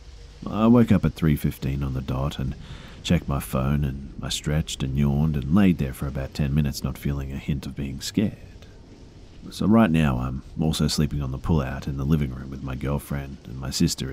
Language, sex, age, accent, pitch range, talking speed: English, male, 40-59, Australian, 70-85 Hz, 210 wpm